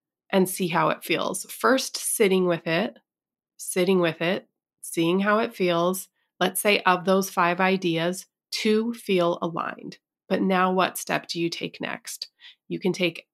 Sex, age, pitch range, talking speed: female, 30-49, 170-200 Hz, 160 wpm